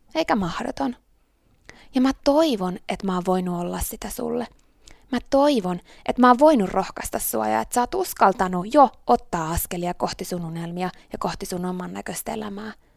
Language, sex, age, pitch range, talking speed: Finnish, female, 20-39, 180-250 Hz, 165 wpm